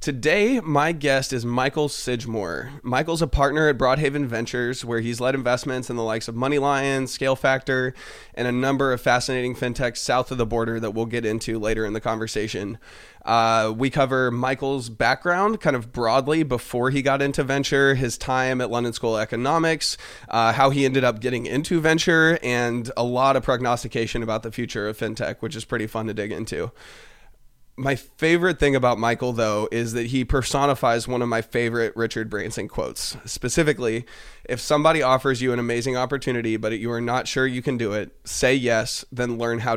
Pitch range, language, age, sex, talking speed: 115-135 Hz, English, 20-39, male, 185 wpm